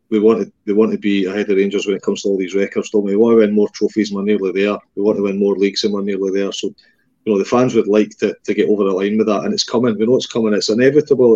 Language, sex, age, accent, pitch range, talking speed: English, male, 30-49, British, 105-120 Hz, 320 wpm